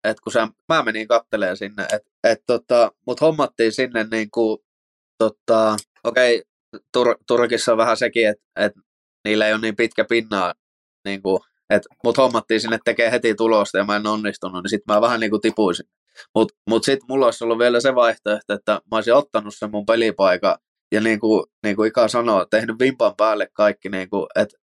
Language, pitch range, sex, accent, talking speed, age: Finnish, 105-115 Hz, male, native, 180 wpm, 20-39